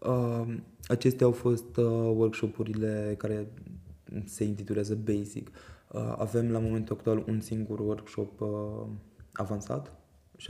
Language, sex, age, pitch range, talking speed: Romanian, male, 20-39, 100-115 Hz, 95 wpm